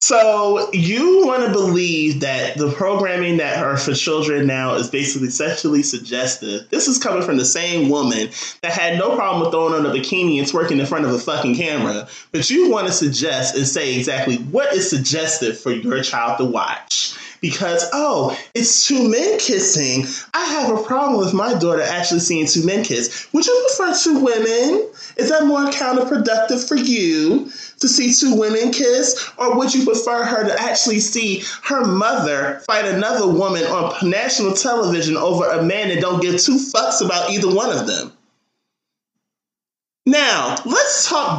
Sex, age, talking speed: male, 20-39, 180 wpm